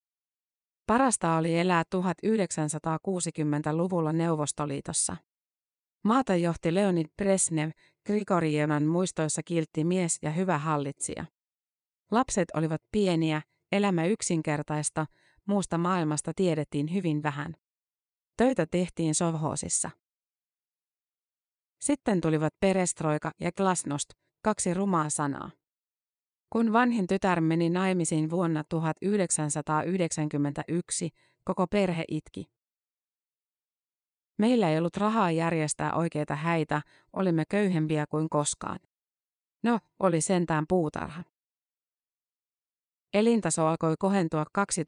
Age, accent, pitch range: 30-49, native, 155-190 Hz